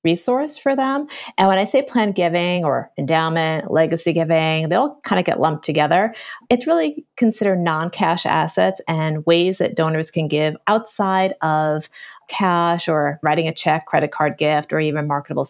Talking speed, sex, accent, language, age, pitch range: 170 wpm, female, American, English, 30-49, 160-195 Hz